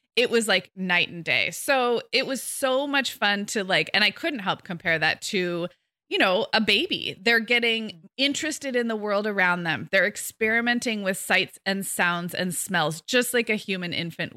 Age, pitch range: 20-39, 180-245 Hz